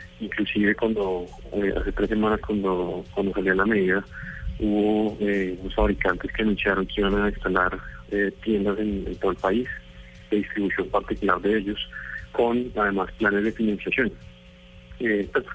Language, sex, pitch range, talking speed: Spanish, male, 95-110 Hz, 155 wpm